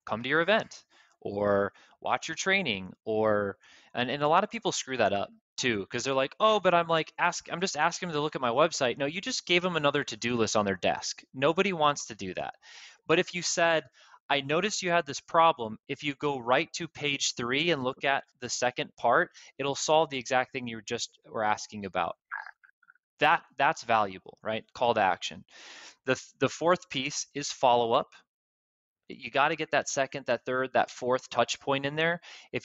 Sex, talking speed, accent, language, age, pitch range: male, 210 wpm, American, English, 20-39, 115-160 Hz